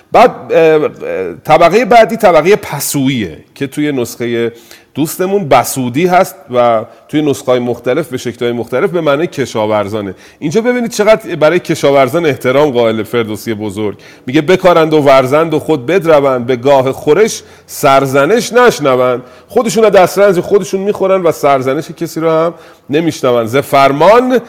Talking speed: 135 wpm